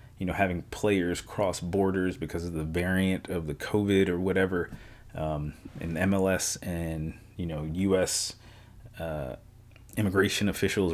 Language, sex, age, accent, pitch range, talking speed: English, male, 30-49, American, 90-110 Hz, 135 wpm